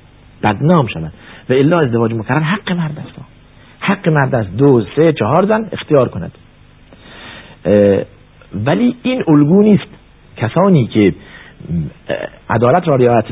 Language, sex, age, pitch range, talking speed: Persian, male, 50-69, 105-145 Hz, 120 wpm